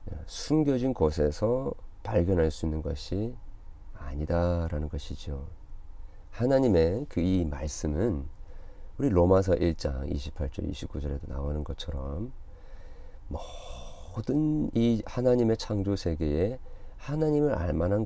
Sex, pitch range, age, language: male, 80-125 Hz, 40-59, Korean